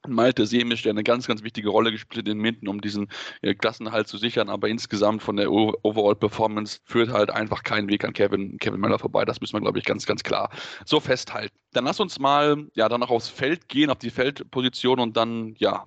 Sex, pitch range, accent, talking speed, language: male, 110-120 Hz, German, 220 wpm, German